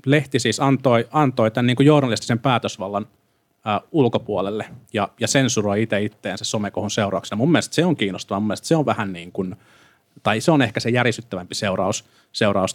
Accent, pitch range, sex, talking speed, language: native, 105-125 Hz, male, 170 wpm, Finnish